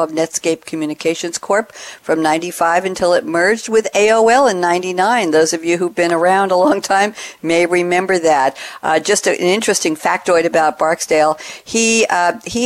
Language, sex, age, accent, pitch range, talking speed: English, female, 60-79, American, 155-200 Hz, 170 wpm